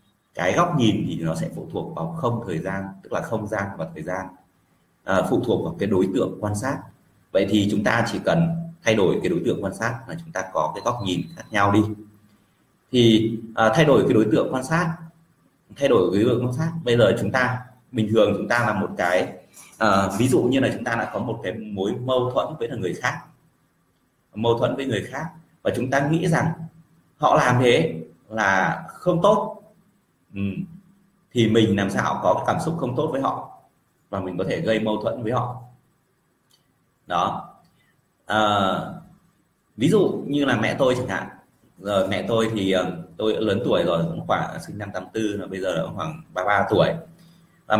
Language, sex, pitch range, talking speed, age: Vietnamese, male, 100-160 Hz, 205 wpm, 30-49